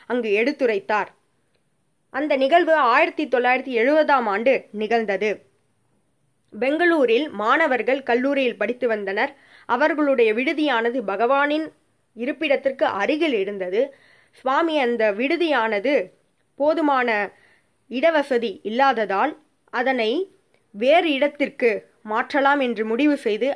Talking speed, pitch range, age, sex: 85 wpm, 215-280 Hz, 20-39, female